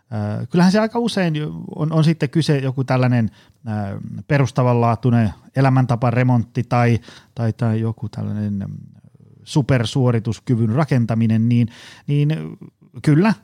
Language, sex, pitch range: Finnish, male, 105-135 Hz